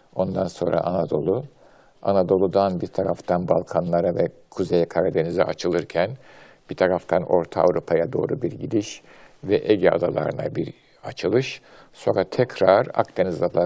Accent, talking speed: native, 115 wpm